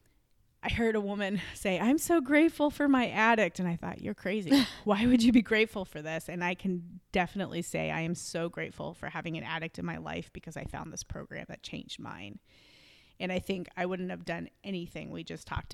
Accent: American